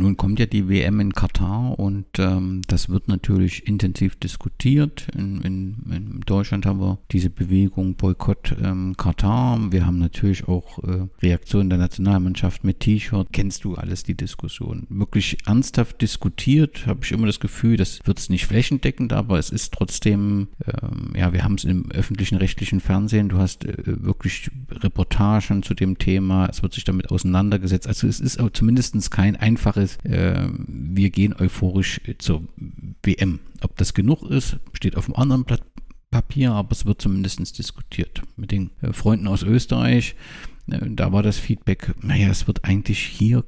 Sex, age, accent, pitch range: male, 50-69, German, 95-110 Hz